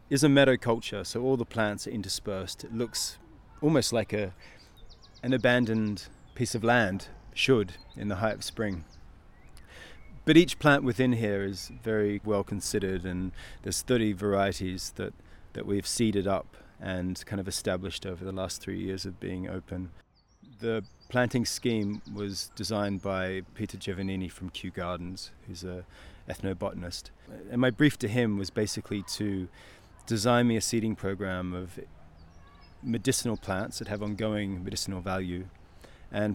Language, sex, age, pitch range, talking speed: English, male, 30-49, 95-115 Hz, 150 wpm